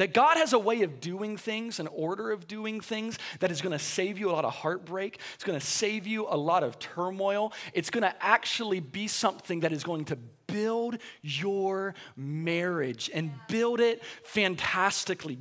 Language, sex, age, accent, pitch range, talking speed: English, male, 30-49, American, 155-220 Hz, 190 wpm